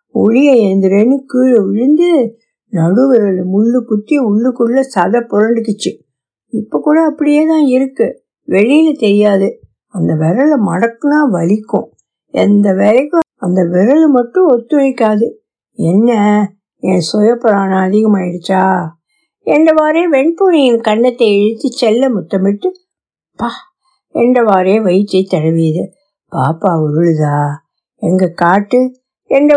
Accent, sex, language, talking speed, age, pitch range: native, female, Tamil, 55 wpm, 60-79, 190-270 Hz